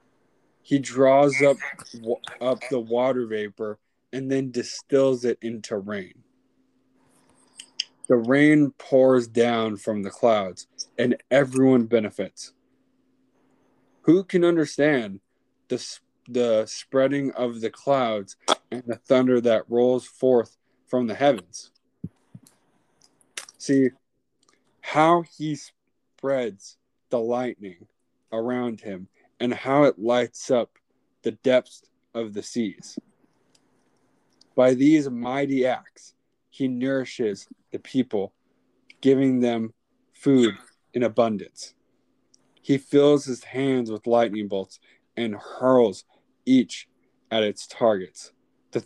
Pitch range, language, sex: 115-135 Hz, English, male